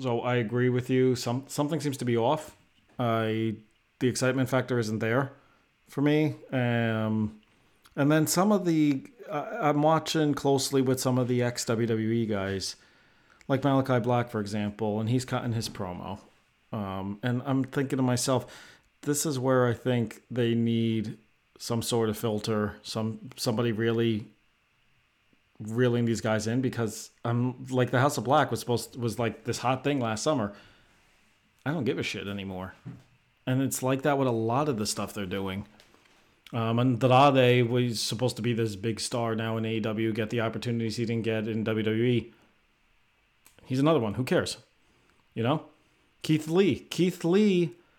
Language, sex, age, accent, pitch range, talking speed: English, male, 40-59, American, 110-135 Hz, 170 wpm